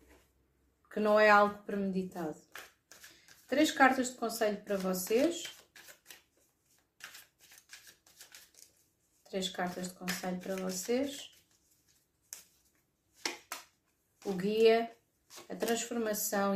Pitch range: 190-220 Hz